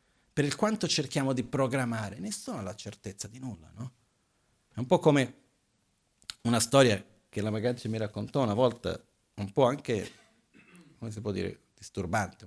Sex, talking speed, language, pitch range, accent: male, 165 wpm, Italian, 110-145 Hz, native